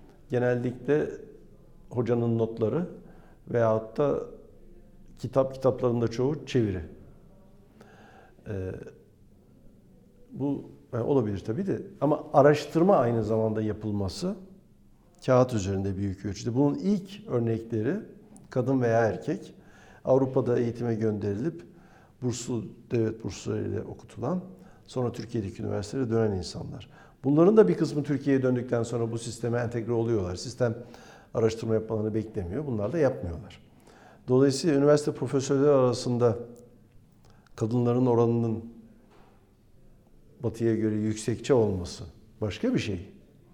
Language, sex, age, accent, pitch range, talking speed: Turkish, male, 60-79, native, 110-140 Hz, 100 wpm